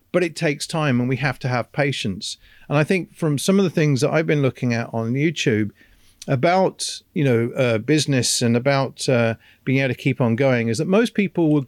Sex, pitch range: male, 125-170 Hz